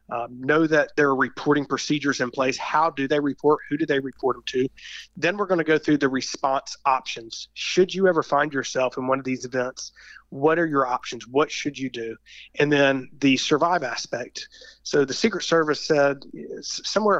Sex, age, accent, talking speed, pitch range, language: male, 30-49, American, 200 wpm, 130-155 Hz, English